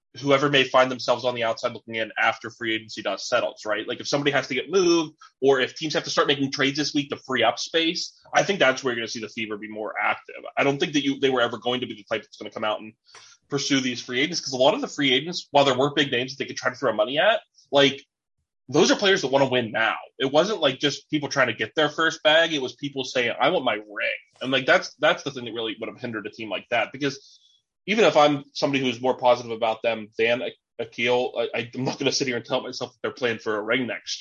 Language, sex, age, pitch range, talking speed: English, male, 20-39, 120-145 Hz, 290 wpm